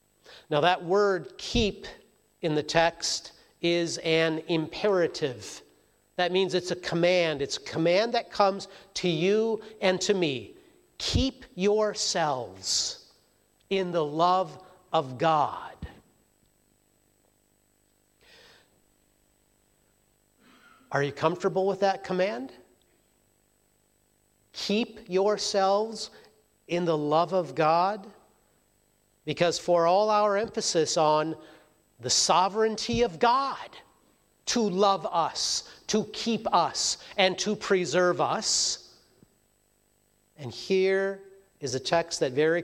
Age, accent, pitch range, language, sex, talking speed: 50-69, American, 165-205 Hz, English, male, 100 wpm